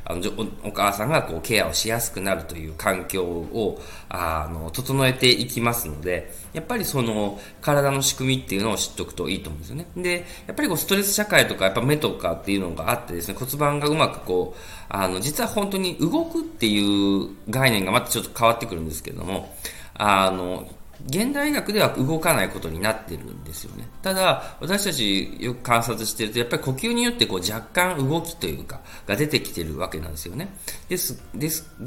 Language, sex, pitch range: Japanese, male, 90-140 Hz